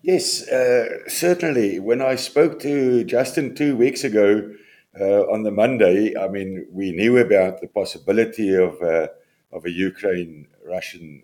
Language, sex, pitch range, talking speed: English, male, 100-140 Hz, 140 wpm